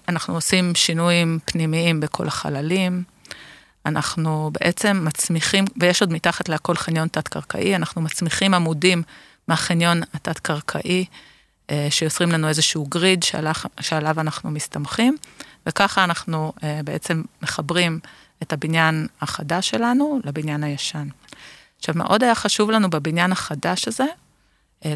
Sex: female